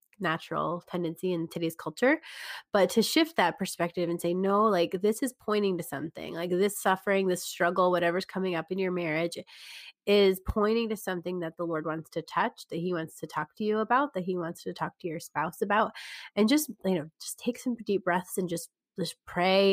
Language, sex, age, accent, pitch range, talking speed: English, female, 20-39, American, 170-210 Hz, 215 wpm